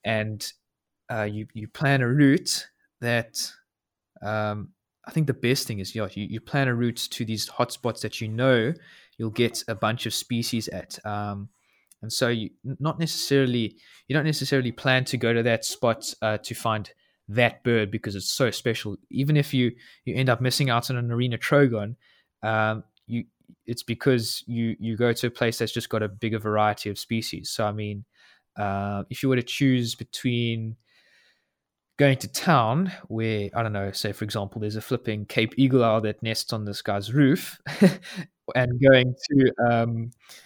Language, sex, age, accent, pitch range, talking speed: English, male, 20-39, Australian, 110-130 Hz, 185 wpm